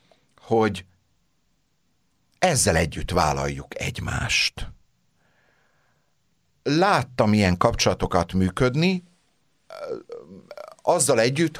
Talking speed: 55 wpm